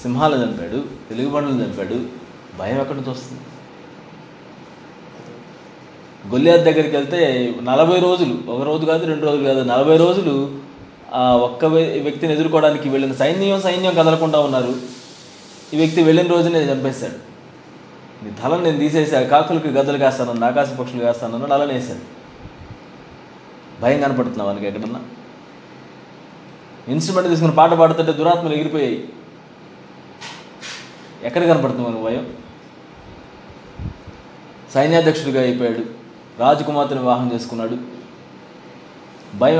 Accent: native